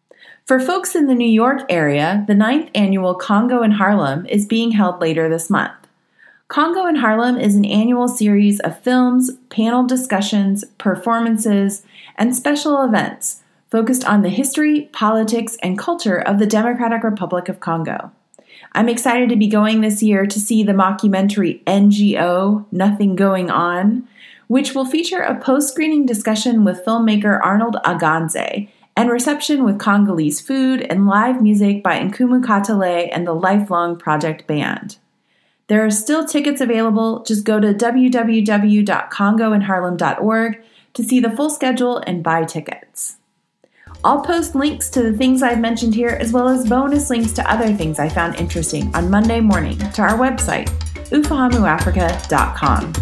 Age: 30-49